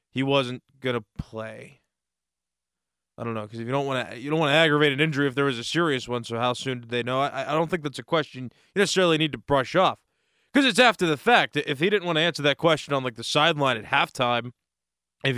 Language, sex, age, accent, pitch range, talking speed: English, male, 20-39, American, 120-160 Hz, 250 wpm